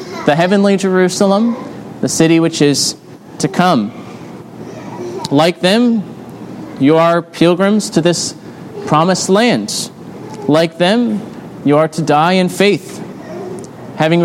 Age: 30-49